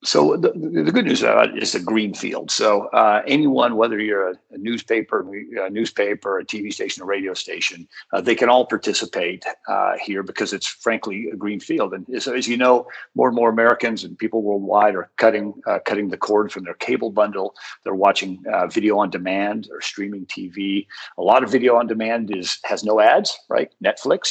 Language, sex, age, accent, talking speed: English, male, 50-69, American, 200 wpm